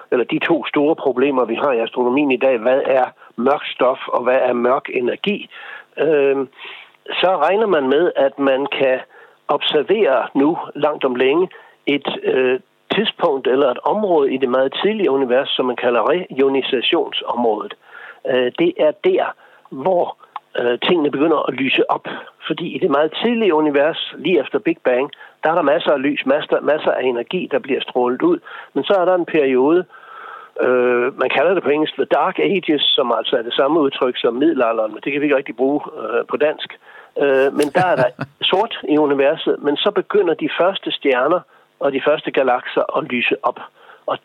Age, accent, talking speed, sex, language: 60-79, native, 185 wpm, male, Danish